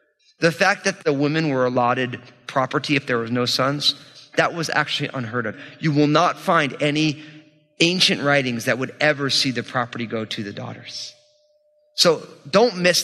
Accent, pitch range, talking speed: American, 130-175 Hz, 175 wpm